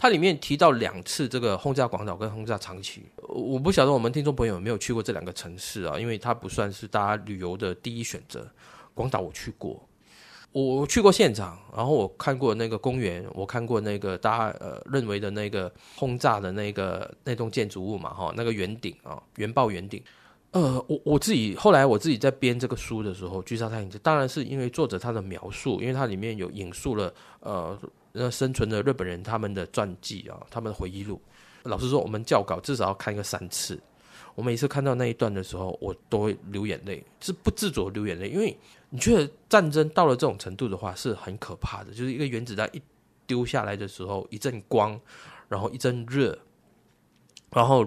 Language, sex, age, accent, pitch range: Chinese, male, 20-39, native, 100-125 Hz